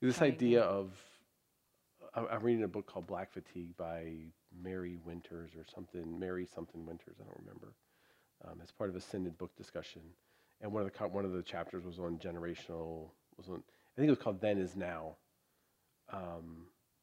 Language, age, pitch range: English, 40-59, 85-95 Hz